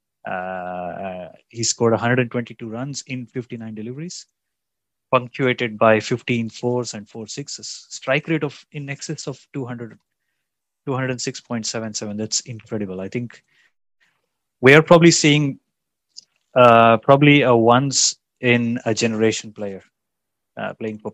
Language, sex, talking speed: English, male, 115 wpm